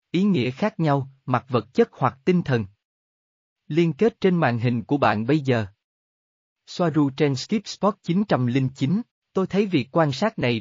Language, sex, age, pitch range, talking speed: Vietnamese, male, 20-39, 115-170 Hz, 165 wpm